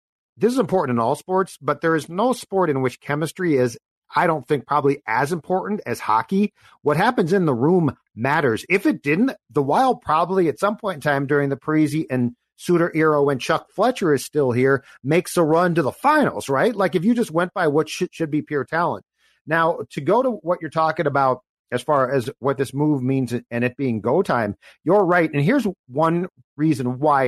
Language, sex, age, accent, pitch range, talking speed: English, male, 50-69, American, 135-180 Hz, 215 wpm